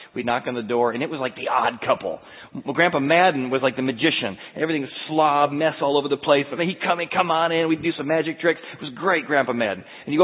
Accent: American